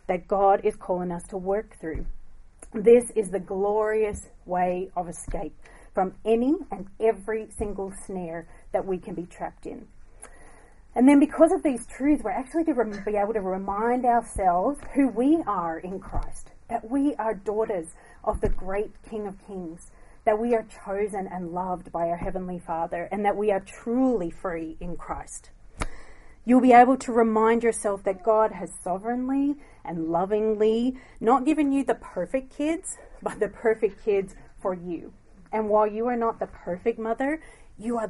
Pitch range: 185-230 Hz